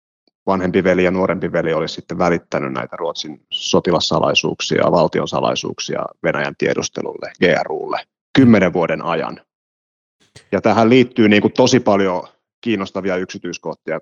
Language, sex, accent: Finnish, male, native